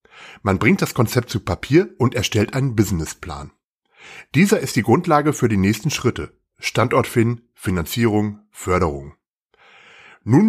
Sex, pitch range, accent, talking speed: male, 100-130 Hz, German, 130 wpm